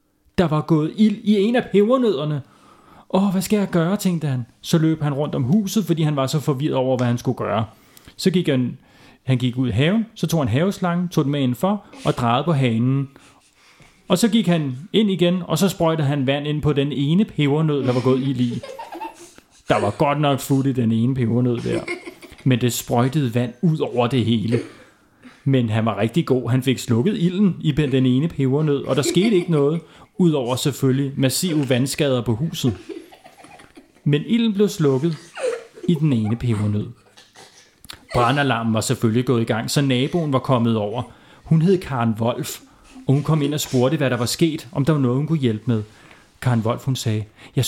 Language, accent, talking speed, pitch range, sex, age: Danish, native, 205 wpm, 125-175 Hz, male, 30-49